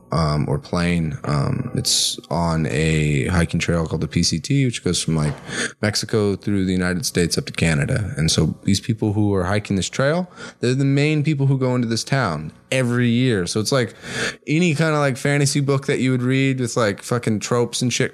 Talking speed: 210 wpm